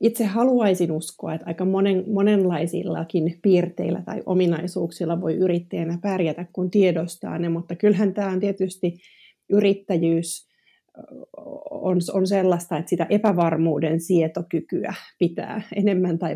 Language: Finnish